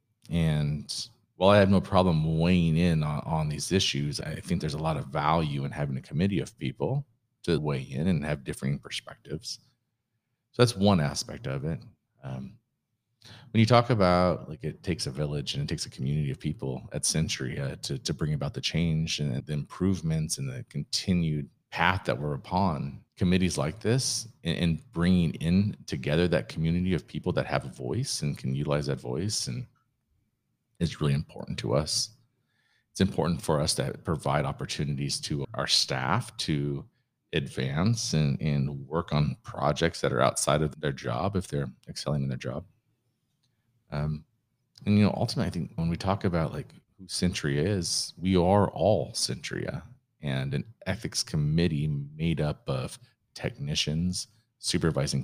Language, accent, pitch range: English, American, 75-115 Hz